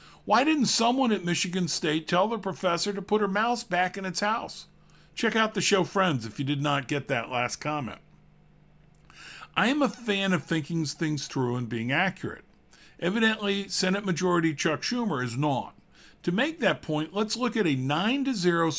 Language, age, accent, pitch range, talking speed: English, 50-69, American, 145-205 Hz, 180 wpm